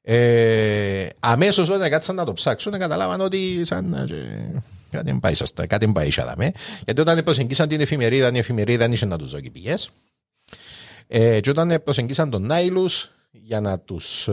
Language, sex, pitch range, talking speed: Greek, male, 110-165 Hz, 150 wpm